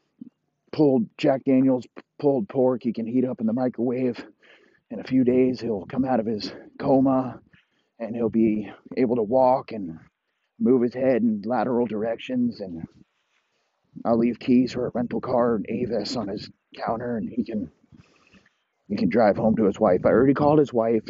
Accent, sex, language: American, male, English